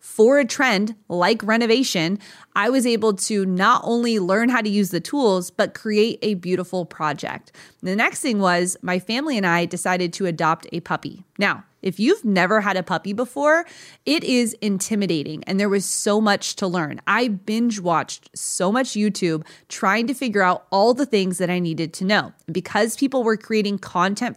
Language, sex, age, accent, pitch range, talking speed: English, female, 20-39, American, 185-235 Hz, 185 wpm